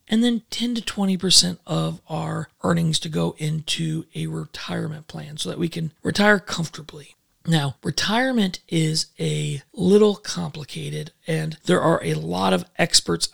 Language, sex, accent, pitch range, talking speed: English, male, American, 155-185 Hz, 150 wpm